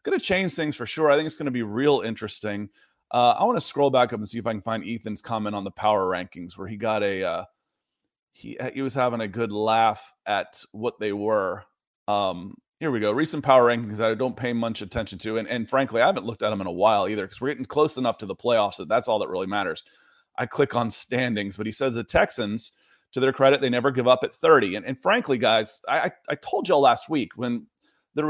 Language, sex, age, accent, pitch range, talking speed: English, male, 30-49, American, 115-150 Hz, 255 wpm